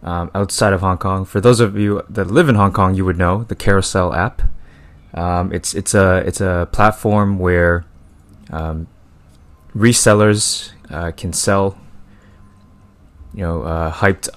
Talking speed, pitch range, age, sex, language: 155 wpm, 80-100 Hz, 20-39, male, English